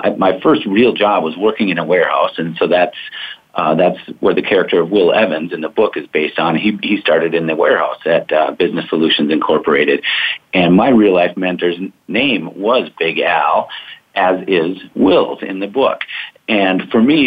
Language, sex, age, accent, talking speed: English, male, 50-69, American, 190 wpm